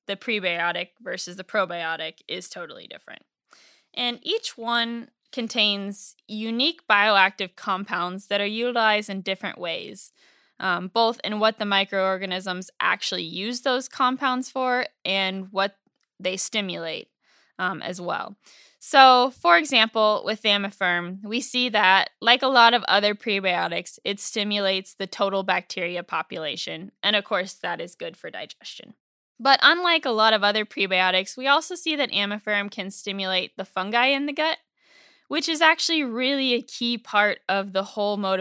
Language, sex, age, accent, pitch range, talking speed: English, female, 10-29, American, 190-245 Hz, 150 wpm